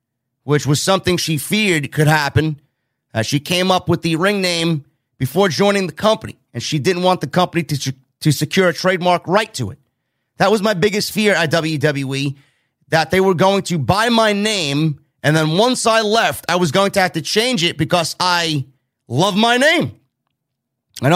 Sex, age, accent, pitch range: male, 30-49, American, 135-185 Hz